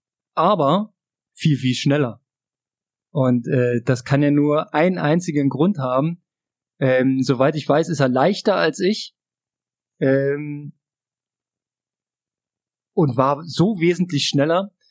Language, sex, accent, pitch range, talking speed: German, male, German, 140-180 Hz, 115 wpm